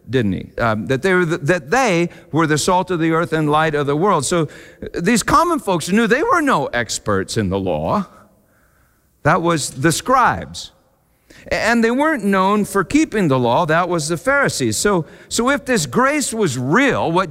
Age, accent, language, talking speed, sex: 50-69, American, English, 195 wpm, male